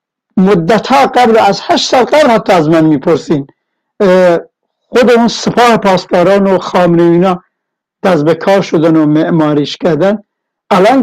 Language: Persian